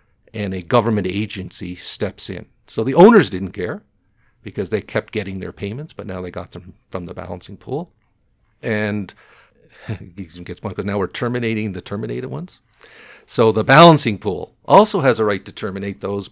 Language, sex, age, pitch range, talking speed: English, male, 50-69, 95-110 Hz, 170 wpm